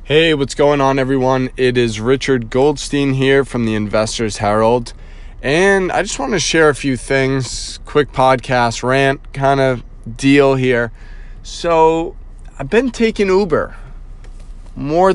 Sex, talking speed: male, 145 wpm